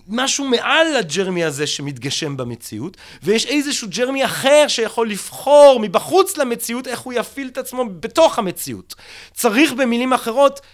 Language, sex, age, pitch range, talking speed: Hebrew, male, 30-49, 165-250 Hz, 135 wpm